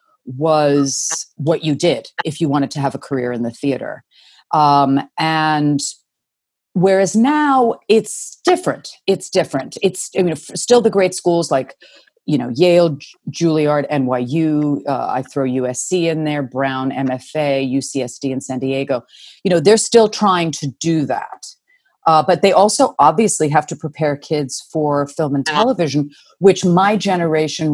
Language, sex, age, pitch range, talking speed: English, female, 40-59, 140-180 Hz, 155 wpm